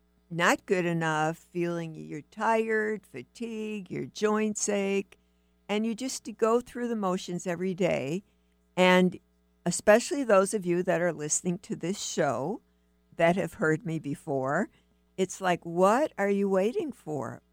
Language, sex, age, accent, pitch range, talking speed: English, female, 60-79, American, 155-200 Hz, 145 wpm